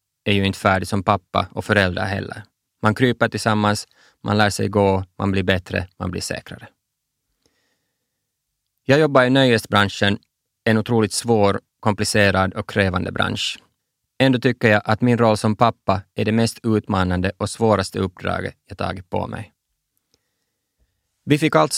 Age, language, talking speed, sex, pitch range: 20-39, Swedish, 150 wpm, male, 100-115 Hz